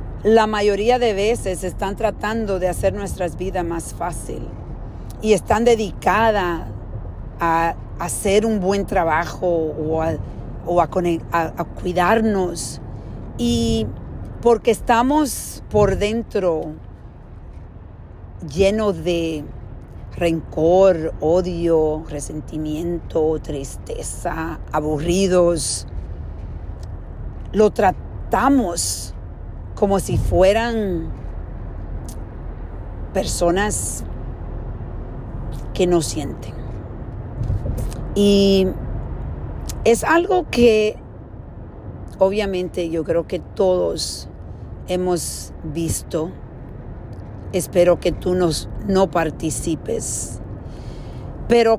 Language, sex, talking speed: Spanish, female, 80 wpm